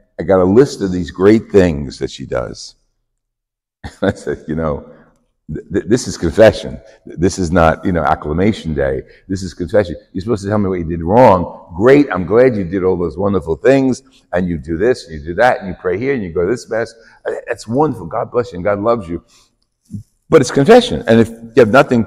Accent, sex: American, male